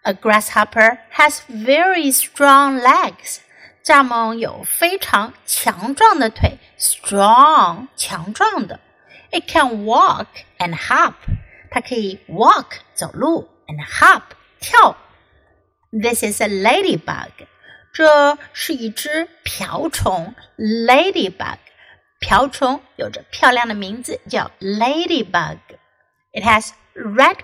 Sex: female